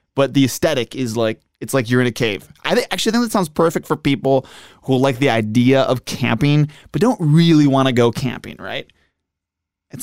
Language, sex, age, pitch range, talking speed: English, male, 20-39, 120-150 Hz, 205 wpm